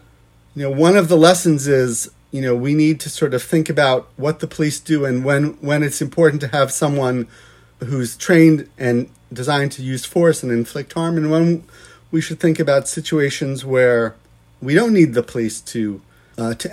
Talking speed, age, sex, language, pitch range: 195 wpm, 40-59, male, English, 120-155 Hz